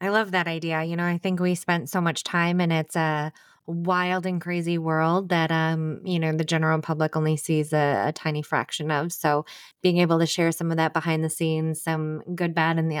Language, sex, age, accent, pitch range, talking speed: English, female, 20-39, American, 160-180 Hz, 230 wpm